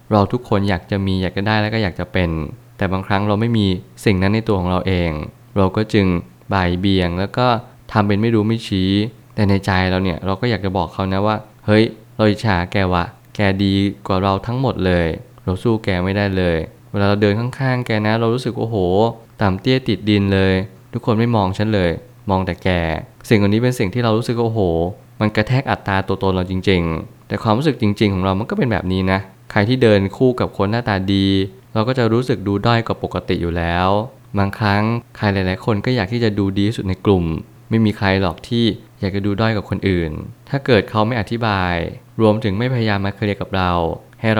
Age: 20-39